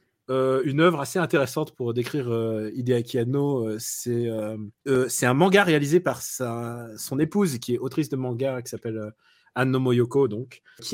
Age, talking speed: 30-49, 185 wpm